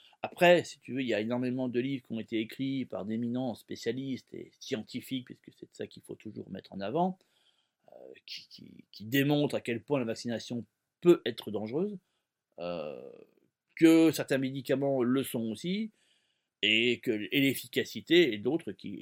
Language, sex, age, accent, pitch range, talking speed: French, male, 30-49, French, 120-175 Hz, 175 wpm